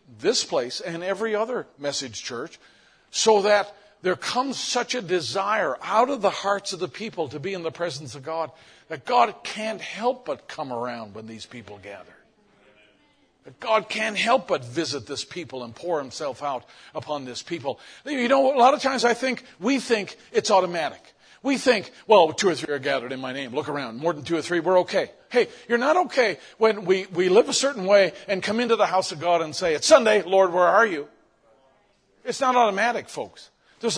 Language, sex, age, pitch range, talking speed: English, male, 50-69, 170-235 Hz, 205 wpm